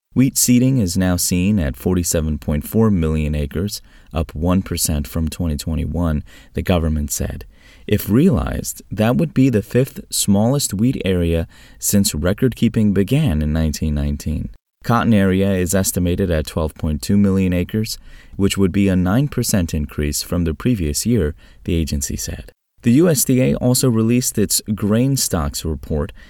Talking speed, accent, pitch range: 135 wpm, American, 80-110 Hz